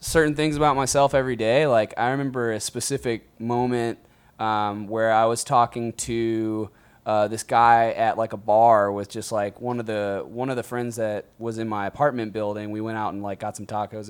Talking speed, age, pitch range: 210 wpm, 20-39, 110-140 Hz